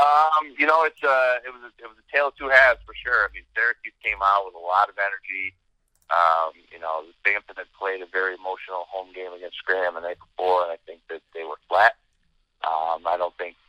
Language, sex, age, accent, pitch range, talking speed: English, male, 30-49, American, 90-110 Hz, 240 wpm